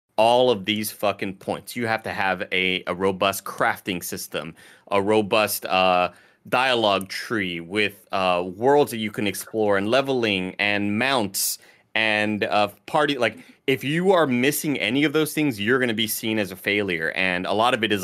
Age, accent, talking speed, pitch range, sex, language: 30-49, American, 185 wpm, 95-115 Hz, male, English